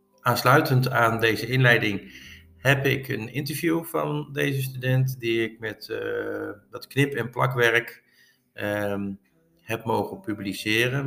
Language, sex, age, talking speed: Dutch, male, 50-69, 125 wpm